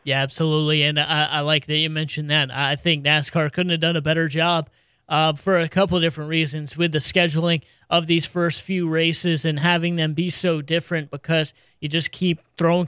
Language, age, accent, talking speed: English, 30-49, American, 210 wpm